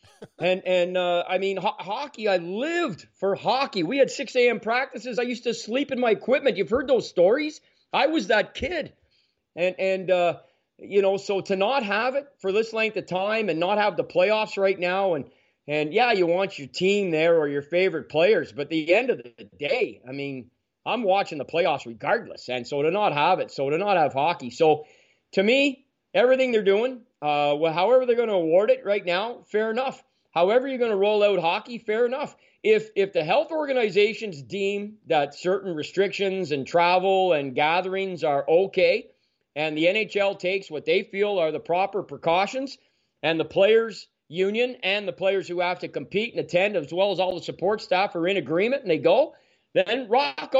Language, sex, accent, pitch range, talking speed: English, male, American, 180-255 Hz, 200 wpm